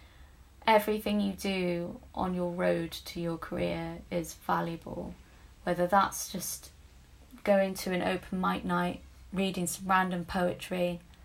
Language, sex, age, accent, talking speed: English, female, 20-39, British, 130 wpm